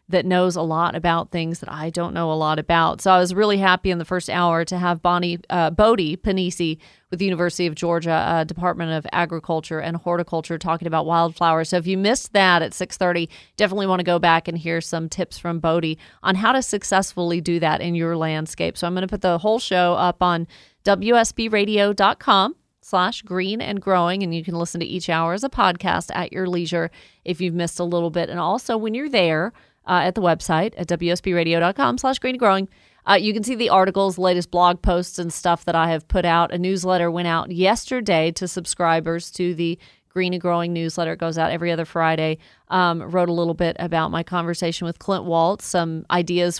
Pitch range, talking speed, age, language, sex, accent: 165-185 Hz, 210 wpm, 40-59, English, female, American